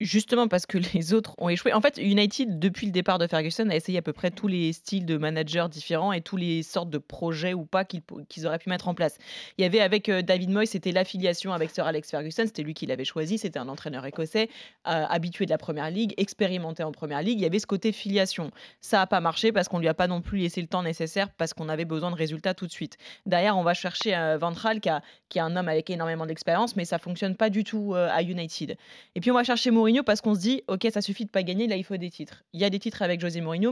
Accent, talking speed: French, 280 wpm